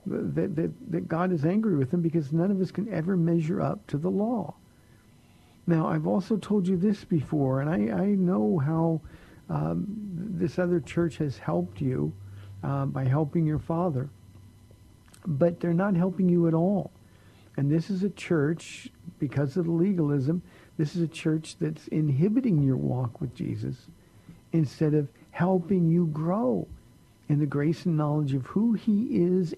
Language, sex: English, male